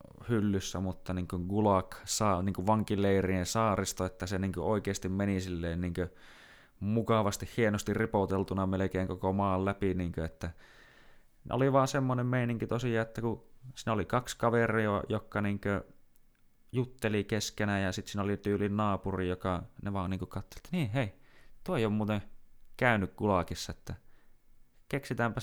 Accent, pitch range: native, 90-110 Hz